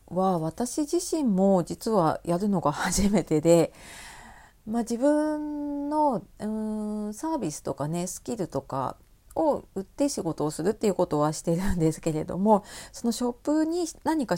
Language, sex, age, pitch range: Japanese, female, 40-59, 160-230 Hz